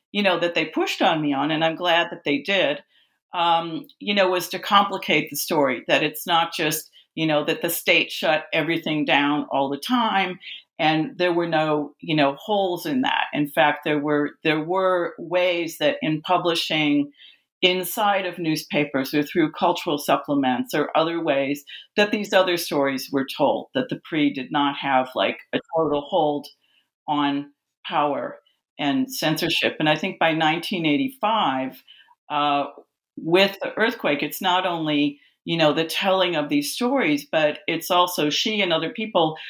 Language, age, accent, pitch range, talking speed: English, 50-69, American, 150-190 Hz, 170 wpm